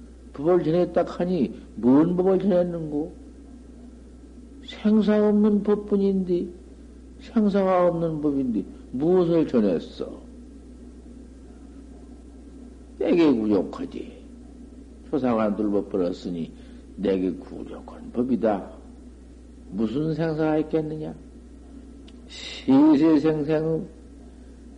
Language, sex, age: Korean, male, 60-79